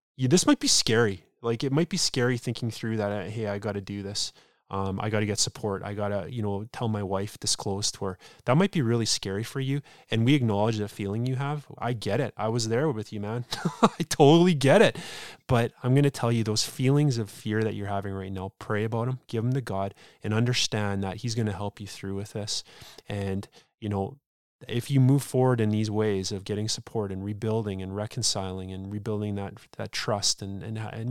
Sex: male